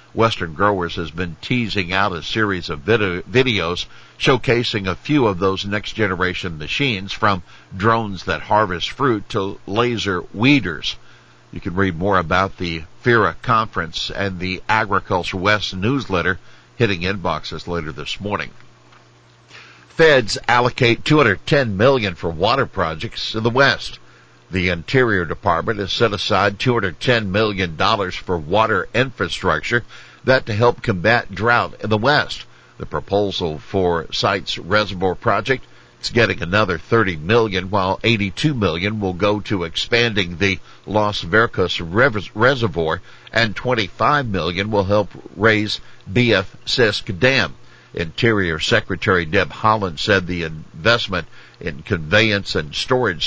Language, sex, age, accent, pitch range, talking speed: English, male, 60-79, American, 90-115 Hz, 130 wpm